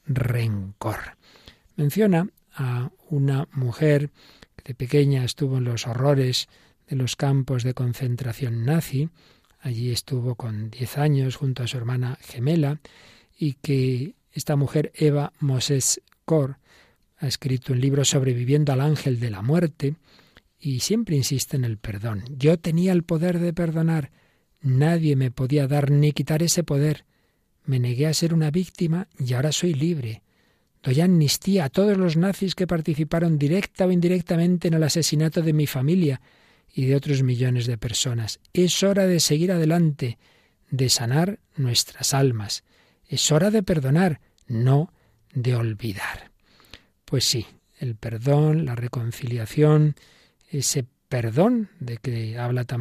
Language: Spanish